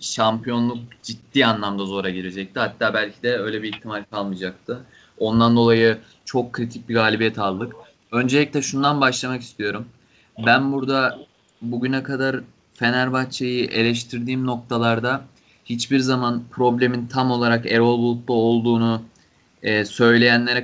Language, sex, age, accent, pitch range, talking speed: Turkish, male, 20-39, native, 110-125 Hz, 115 wpm